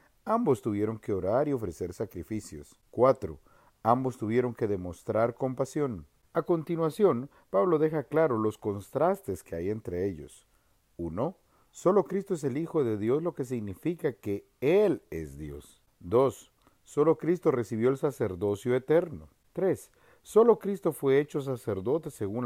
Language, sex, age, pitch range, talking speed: Spanish, male, 40-59, 110-155 Hz, 140 wpm